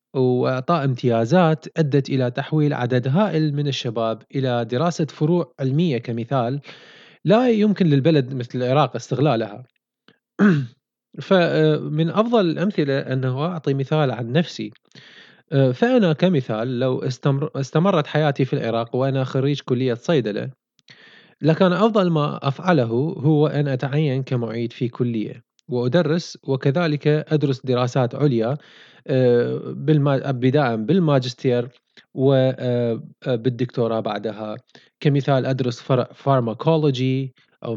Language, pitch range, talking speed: Arabic, 125-155 Hz, 100 wpm